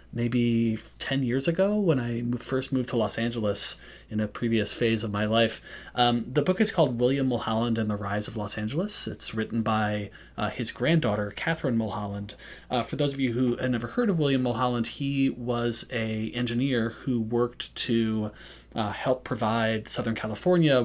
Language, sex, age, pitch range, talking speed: English, male, 30-49, 105-125 Hz, 180 wpm